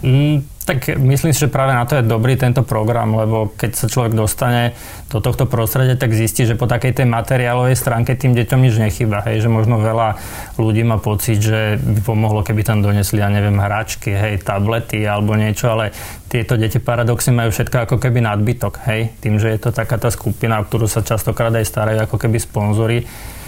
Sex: male